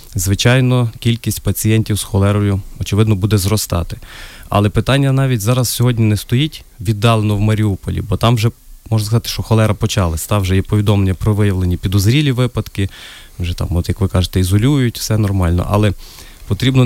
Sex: male